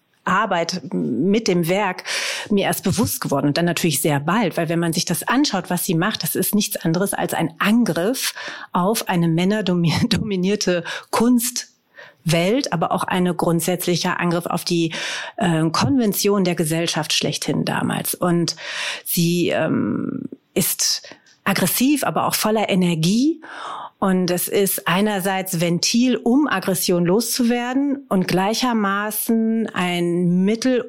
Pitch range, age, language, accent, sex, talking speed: 175-225 Hz, 40-59, German, German, female, 130 wpm